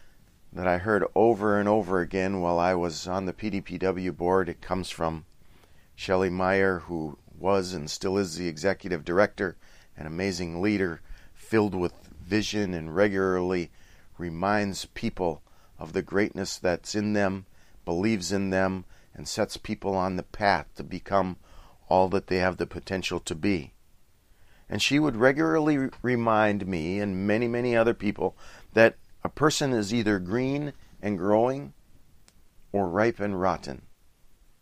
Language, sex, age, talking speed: English, male, 40-59, 150 wpm